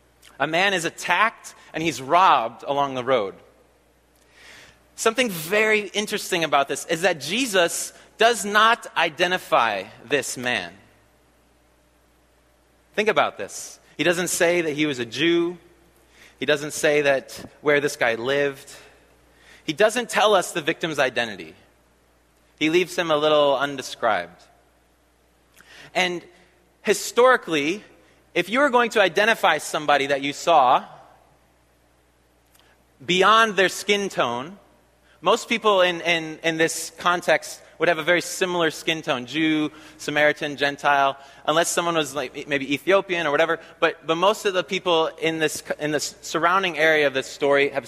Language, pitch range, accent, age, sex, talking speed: English, 135-185 Hz, American, 30-49, male, 140 wpm